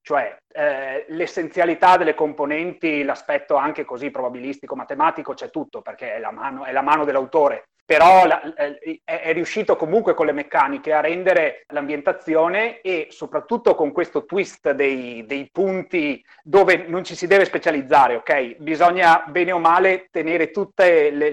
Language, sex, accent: Italian, male, native